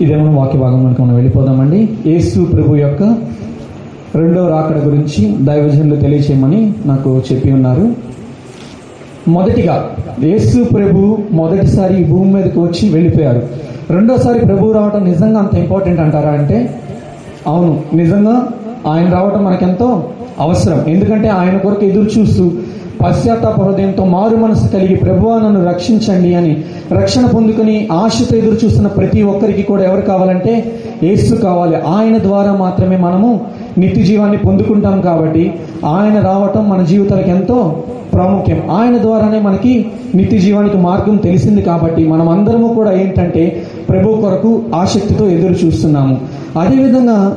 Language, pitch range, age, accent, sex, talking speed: Telugu, 160-210 Hz, 30-49, native, male, 120 wpm